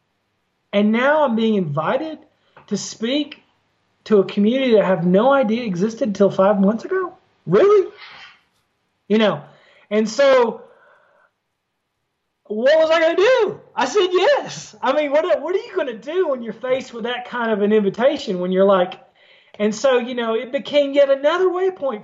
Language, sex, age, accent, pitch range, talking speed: English, male, 30-49, American, 180-255 Hz, 175 wpm